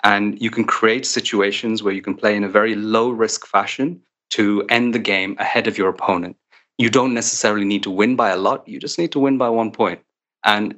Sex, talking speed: male, 225 wpm